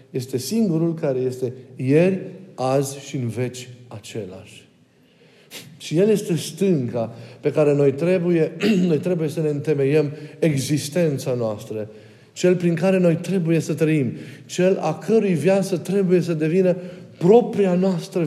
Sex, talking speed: male, 135 wpm